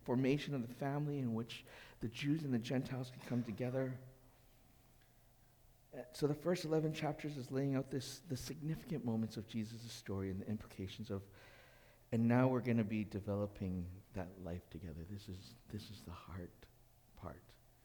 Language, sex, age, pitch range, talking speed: English, male, 60-79, 110-130 Hz, 165 wpm